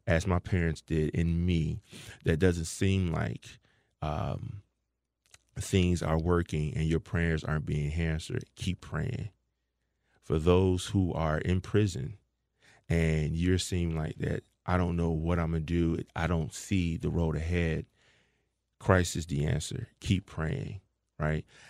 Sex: male